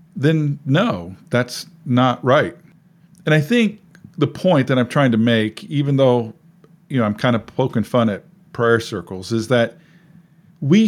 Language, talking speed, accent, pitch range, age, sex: English, 165 wpm, American, 125-170 Hz, 50-69, male